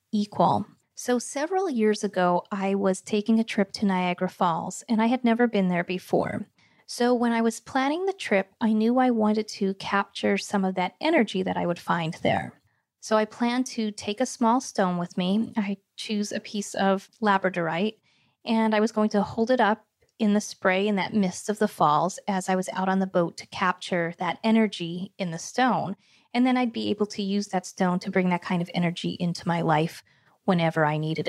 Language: English